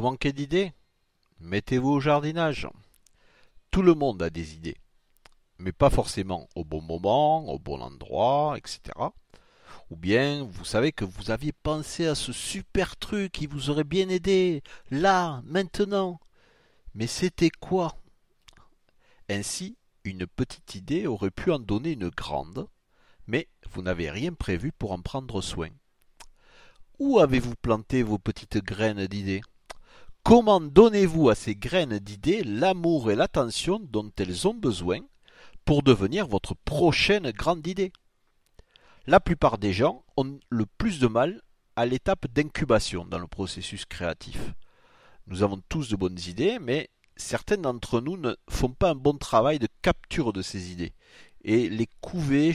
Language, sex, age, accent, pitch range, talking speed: French, male, 50-69, French, 100-160 Hz, 145 wpm